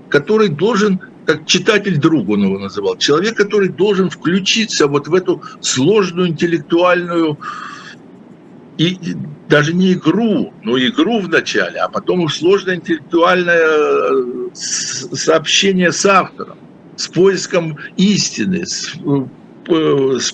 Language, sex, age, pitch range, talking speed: Russian, male, 60-79, 150-195 Hz, 105 wpm